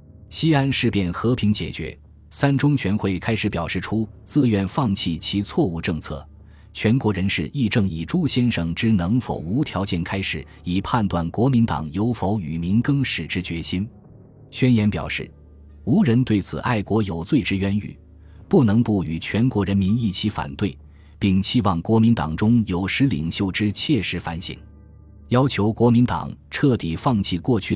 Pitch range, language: 85-115 Hz, Chinese